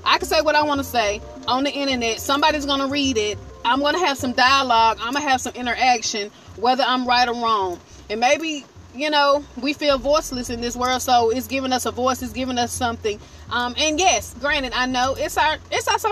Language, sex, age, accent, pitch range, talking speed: English, female, 30-49, American, 215-285 Hz, 235 wpm